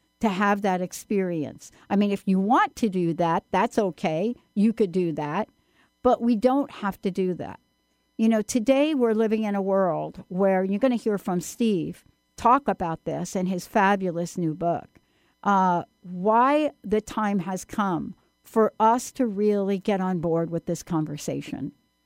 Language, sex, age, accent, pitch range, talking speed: English, female, 60-79, American, 185-230 Hz, 175 wpm